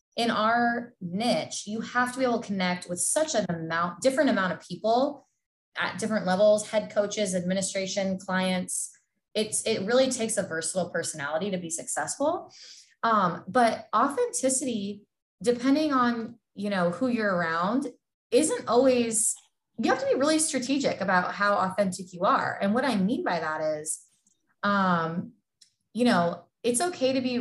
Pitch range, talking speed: 190-240 Hz, 160 wpm